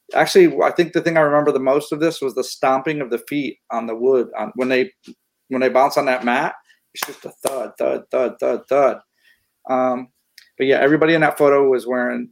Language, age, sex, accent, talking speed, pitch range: English, 40-59, male, American, 220 wpm, 125-155 Hz